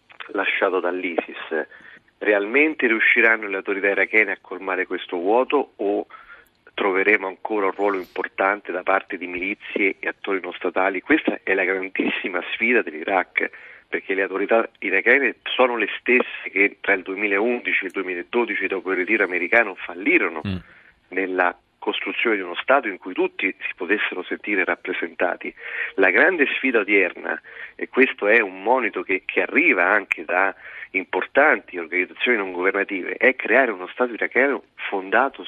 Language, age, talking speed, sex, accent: Italian, 40-59, 145 wpm, male, native